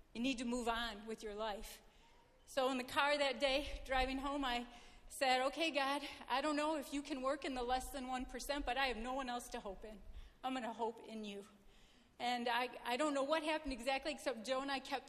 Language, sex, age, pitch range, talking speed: English, female, 40-59, 230-270 Hz, 240 wpm